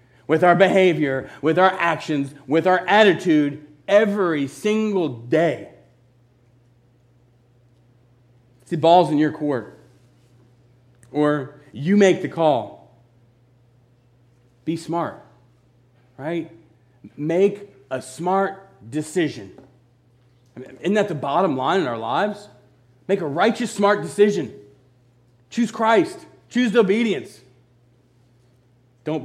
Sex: male